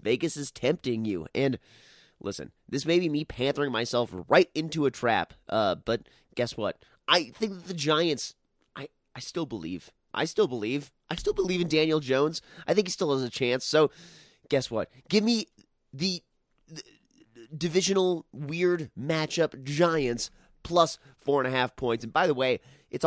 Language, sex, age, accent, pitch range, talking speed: English, male, 30-49, American, 115-160 Hz, 165 wpm